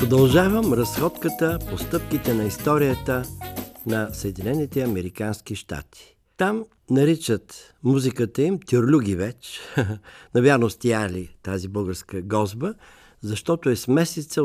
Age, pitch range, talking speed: 60-79, 100-145 Hz, 105 wpm